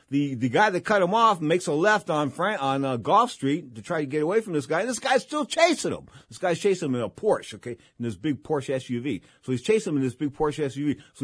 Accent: American